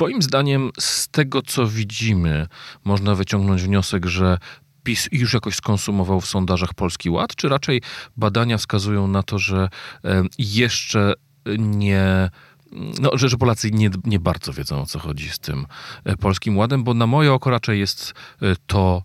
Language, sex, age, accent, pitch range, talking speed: Polish, male, 40-59, native, 90-110 Hz, 150 wpm